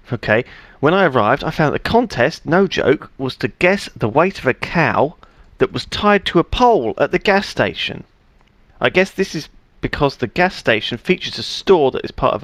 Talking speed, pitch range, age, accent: 205 wpm, 115-165 Hz, 40-59, British